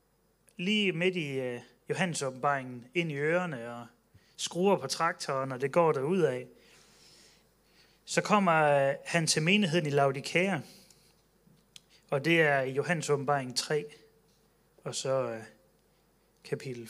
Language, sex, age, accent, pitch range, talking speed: Danish, male, 30-49, native, 140-180 Hz, 125 wpm